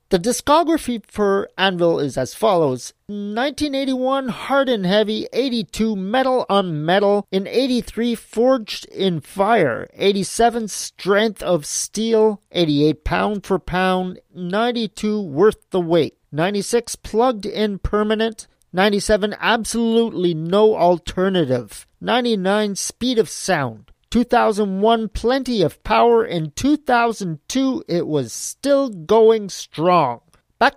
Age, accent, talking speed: 40-59, American, 110 wpm